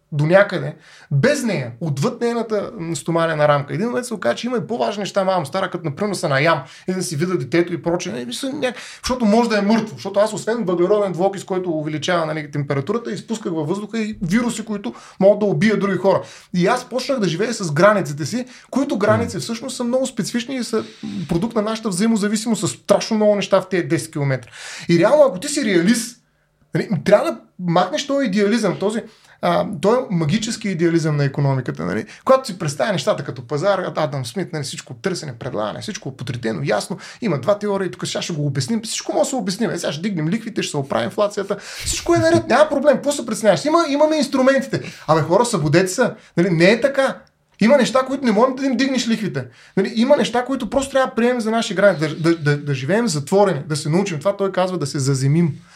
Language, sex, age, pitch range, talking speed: Bulgarian, male, 30-49, 165-230 Hz, 215 wpm